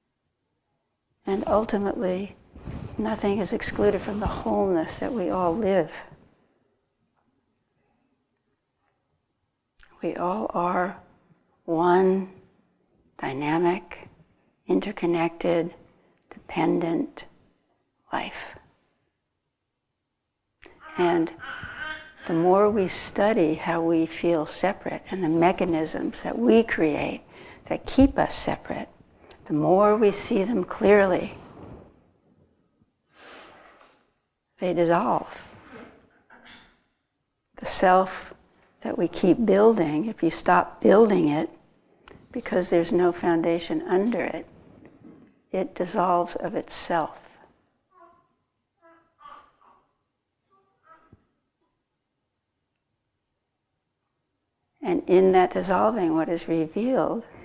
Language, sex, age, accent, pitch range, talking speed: English, female, 60-79, American, 170-210 Hz, 80 wpm